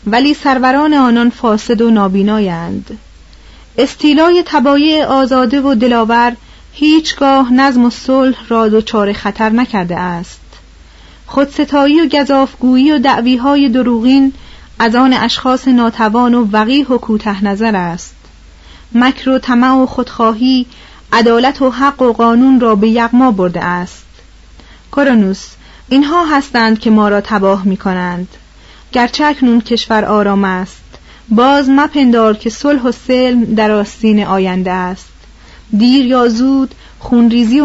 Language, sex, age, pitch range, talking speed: Persian, female, 30-49, 190-260 Hz, 130 wpm